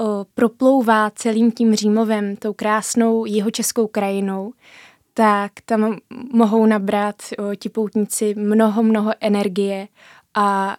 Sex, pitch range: female, 195-220 Hz